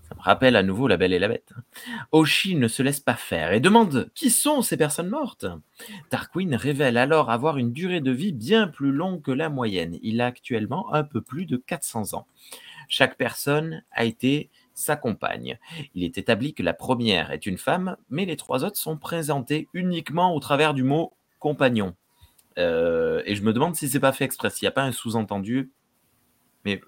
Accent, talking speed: French, 200 wpm